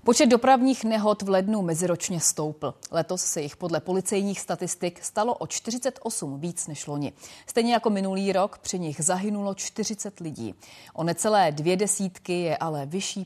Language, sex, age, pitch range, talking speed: Czech, female, 30-49, 165-225 Hz, 160 wpm